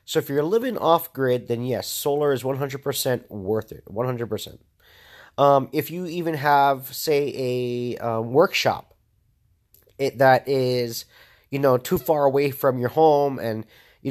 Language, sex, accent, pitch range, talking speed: English, male, American, 115-145 Hz, 145 wpm